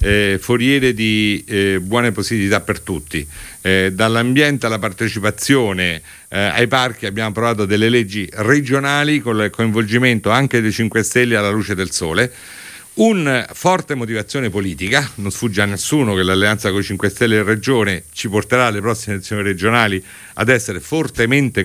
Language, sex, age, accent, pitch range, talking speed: Italian, male, 50-69, native, 100-130 Hz, 160 wpm